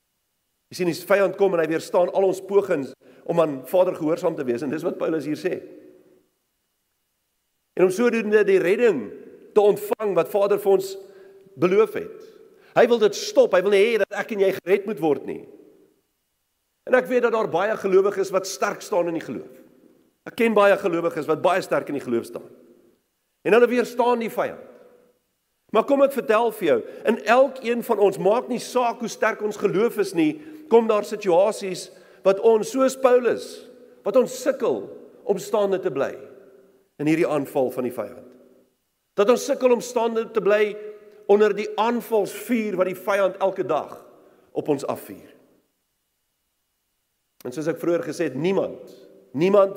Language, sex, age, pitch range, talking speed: English, male, 50-69, 185-255 Hz, 175 wpm